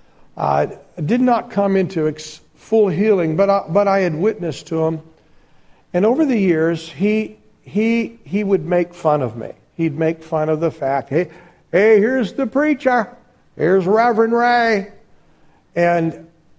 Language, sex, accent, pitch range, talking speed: English, male, American, 150-190 Hz, 160 wpm